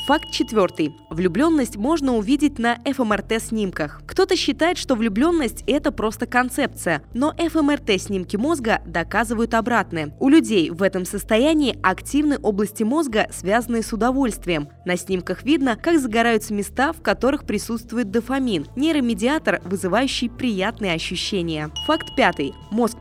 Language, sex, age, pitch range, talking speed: Russian, female, 20-39, 195-275 Hz, 125 wpm